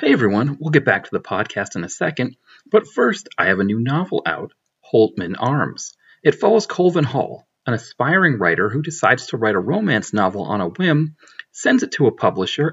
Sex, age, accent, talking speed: male, 40-59, American, 205 wpm